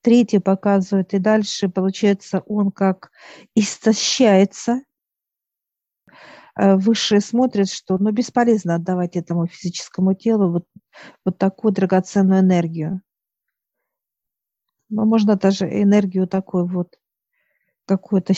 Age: 40-59